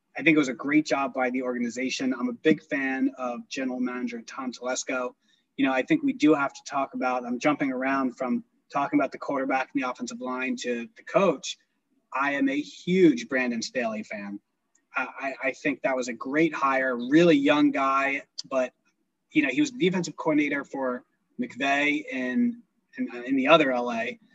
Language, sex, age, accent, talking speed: English, male, 20-39, American, 195 wpm